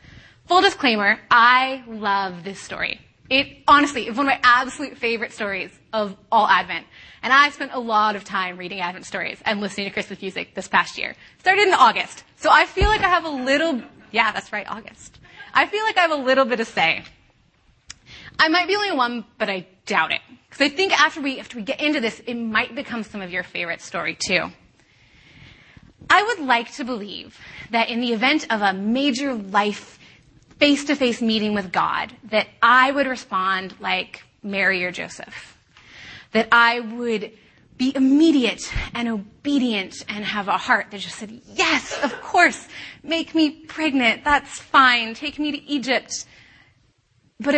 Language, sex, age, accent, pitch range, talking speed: English, female, 20-39, American, 210-285 Hz, 175 wpm